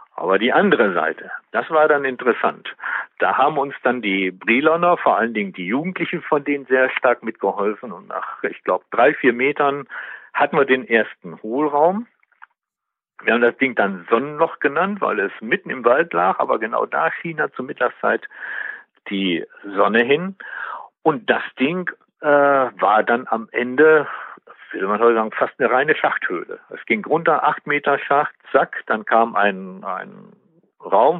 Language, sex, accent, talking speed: German, male, German, 165 wpm